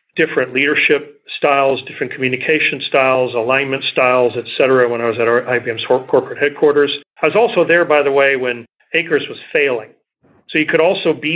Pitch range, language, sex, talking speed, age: 125-165 Hz, English, male, 180 wpm, 40-59